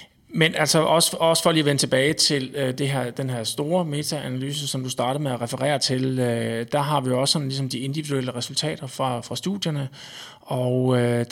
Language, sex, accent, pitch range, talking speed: Danish, male, native, 130-155 Hz, 205 wpm